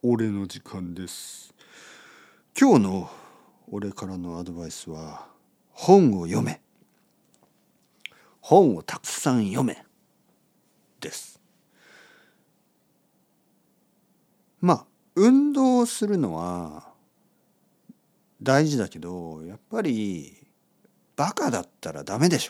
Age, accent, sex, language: 50-69, native, male, Japanese